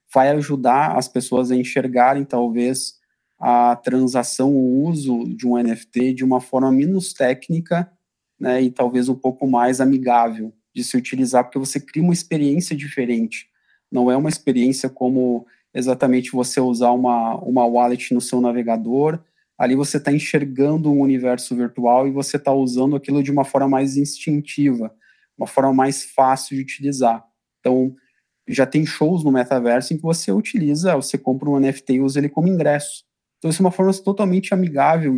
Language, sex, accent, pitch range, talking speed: Portuguese, male, Brazilian, 125-150 Hz, 165 wpm